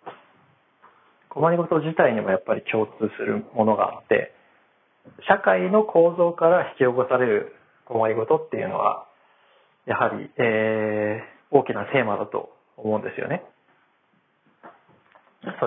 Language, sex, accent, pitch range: Japanese, male, native, 115-175 Hz